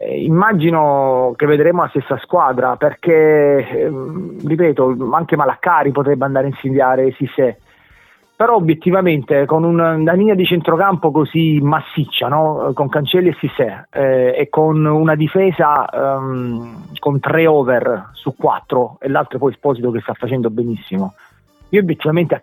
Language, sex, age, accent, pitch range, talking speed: Italian, male, 30-49, native, 130-155 Hz, 140 wpm